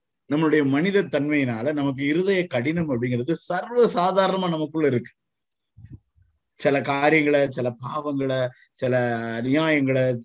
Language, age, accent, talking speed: Tamil, 50-69, native, 95 wpm